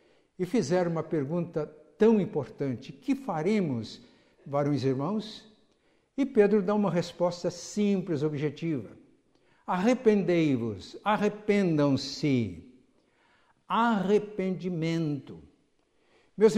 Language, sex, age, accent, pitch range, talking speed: Portuguese, male, 60-79, Brazilian, 175-225 Hz, 80 wpm